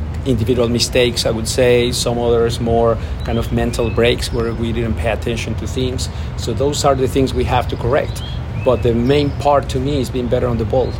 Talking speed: 220 wpm